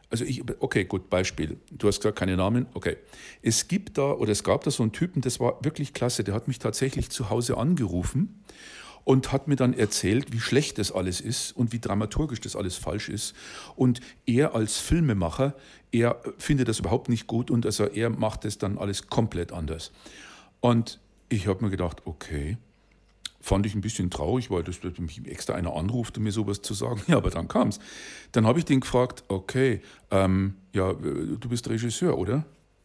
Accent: German